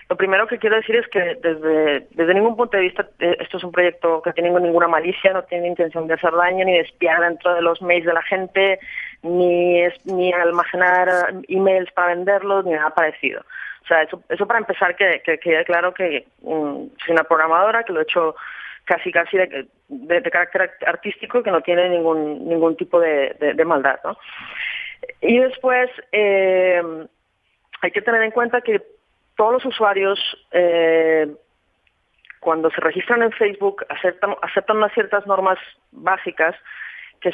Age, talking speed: 30-49, 175 wpm